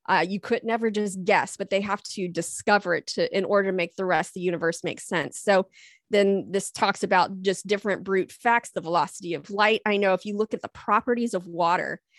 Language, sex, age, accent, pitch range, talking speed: English, female, 20-39, American, 180-215 Hz, 230 wpm